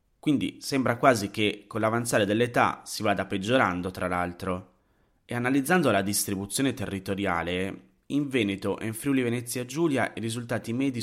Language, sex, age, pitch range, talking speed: Italian, male, 30-49, 90-120 Hz, 135 wpm